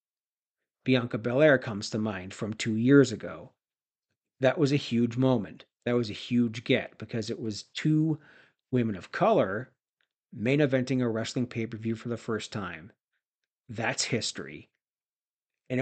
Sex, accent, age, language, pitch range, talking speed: male, American, 40-59, English, 110-130 Hz, 145 wpm